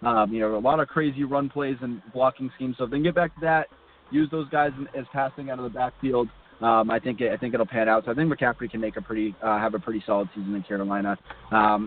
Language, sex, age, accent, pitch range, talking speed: English, male, 20-39, American, 110-140 Hz, 280 wpm